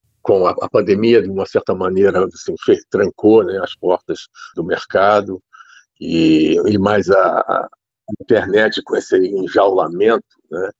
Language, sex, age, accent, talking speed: Portuguese, male, 60-79, Brazilian, 135 wpm